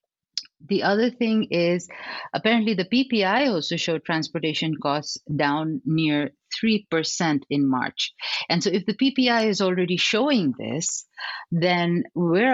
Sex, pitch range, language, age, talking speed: female, 150-210 Hz, English, 50-69, 130 wpm